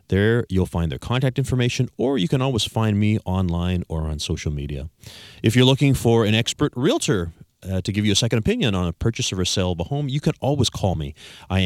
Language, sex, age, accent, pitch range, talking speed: English, male, 40-59, American, 95-130 Hz, 235 wpm